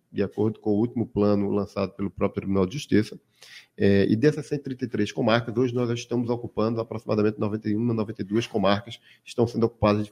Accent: Brazilian